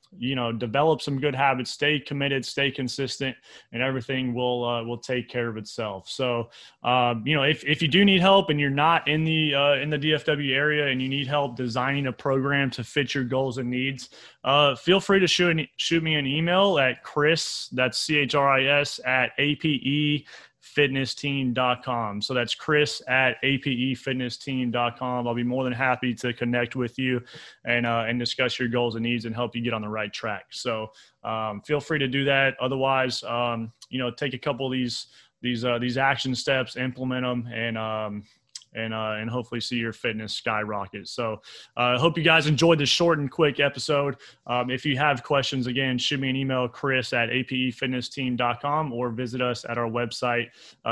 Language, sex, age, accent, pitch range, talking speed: English, male, 20-39, American, 120-140 Hz, 200 wpm